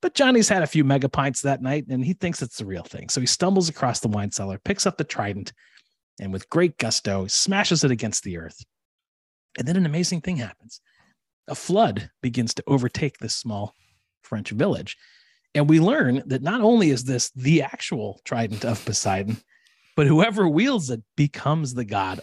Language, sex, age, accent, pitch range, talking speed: English, male, 30-49, American, 105-160 Hz, 190 wpm